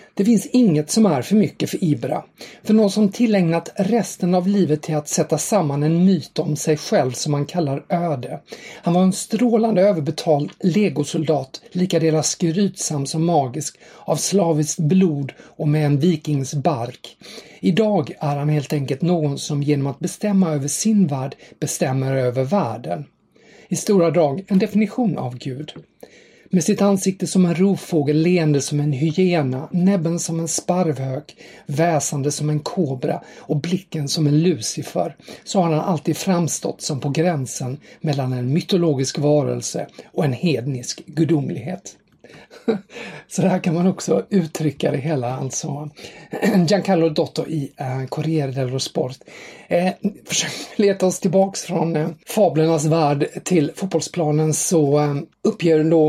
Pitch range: 145-185 Hz